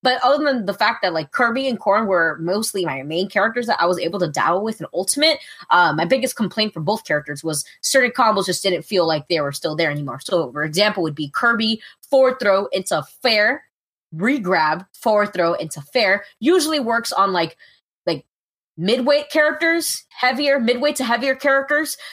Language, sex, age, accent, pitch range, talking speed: English, female, 20-39, American, 180-255 Hz, 185 wpm